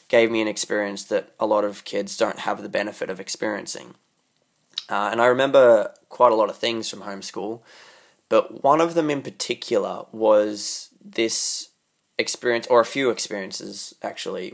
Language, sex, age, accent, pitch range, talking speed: English, male, 20-39, Australian, 105-120 Hz, 165 wpm